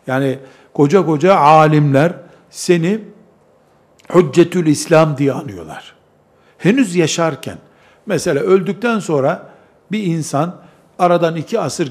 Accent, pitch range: native, 145-190 Hz